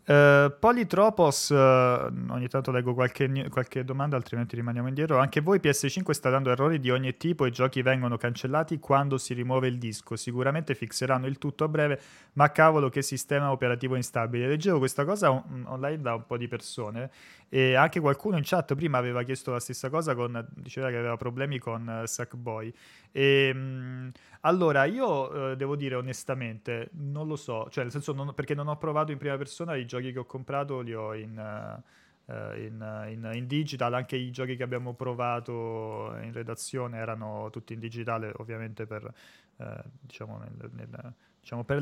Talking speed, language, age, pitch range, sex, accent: 180 wpm, Italian, 30-49, 120-140 Hz, male, native